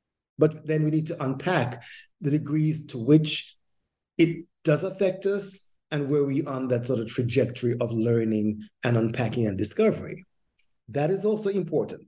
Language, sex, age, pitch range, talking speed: English, male, 50-69, 125-170 Hz, 165 wpm